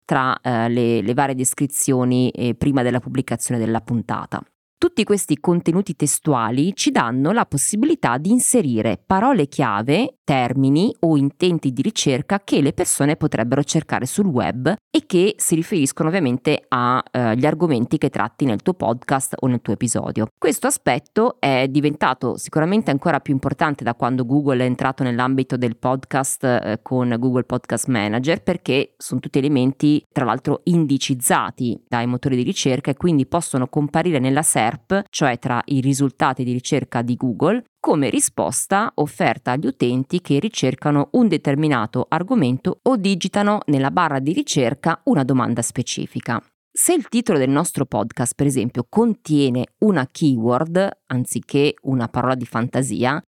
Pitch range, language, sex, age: 125-165 Hz, Italian, female, 20-39